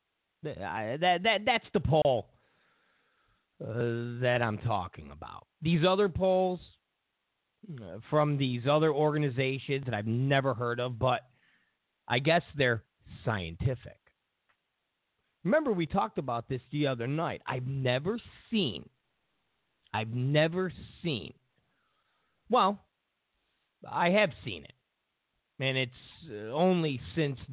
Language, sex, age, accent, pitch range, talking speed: English, male, 40-59, American, 120-170 Hz, 115 wpm